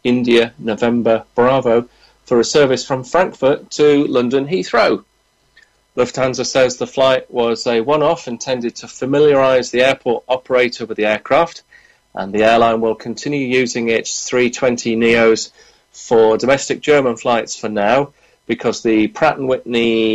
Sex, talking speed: male, 140 wpm